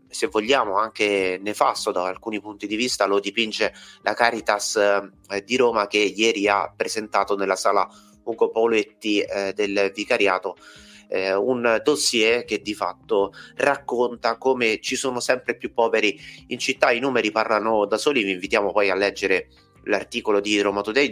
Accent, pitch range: native, 100-125 Hz